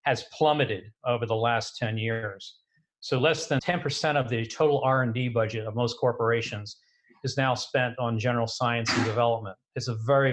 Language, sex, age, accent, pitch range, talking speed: English, male, 50-69, American, 115-140 Hz, 175 wpm